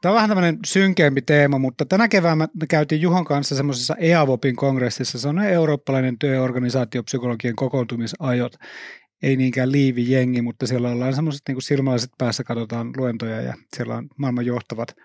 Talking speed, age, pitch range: 150 wpm, 30-49, 125-155 Hz